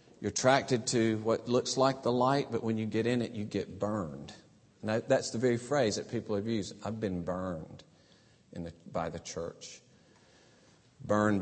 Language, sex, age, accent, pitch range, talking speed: English, male, 40-59, American, 95-115 Hz, 170 wpm